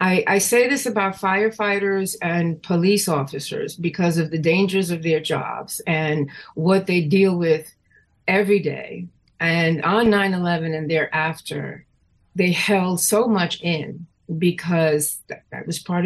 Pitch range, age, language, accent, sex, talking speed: 150-180 Hz, 50-69, English, American, female, 140 wpm